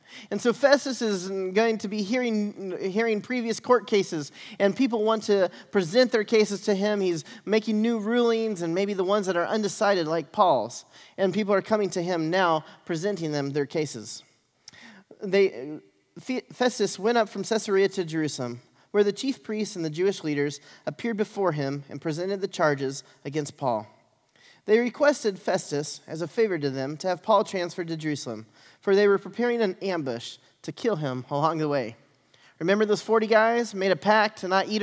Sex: male